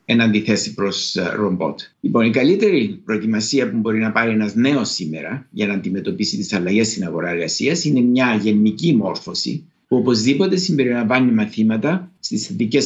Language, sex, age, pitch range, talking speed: Greek, male, 60-79, 105-140 Hz, 150 wpm